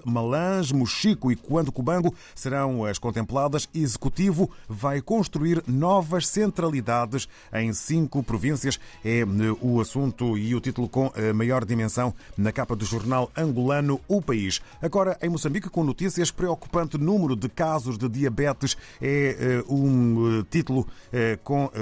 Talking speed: 130 wpm